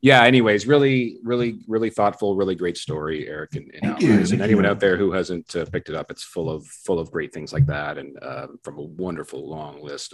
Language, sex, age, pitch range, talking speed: English, male, 40-59, 90-140 Hz, 225 wpm